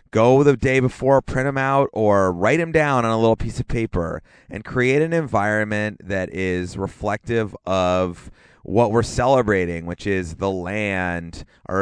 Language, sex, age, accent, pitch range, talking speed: English, male, 30-49, American, 95-115 Hz, 170 wpm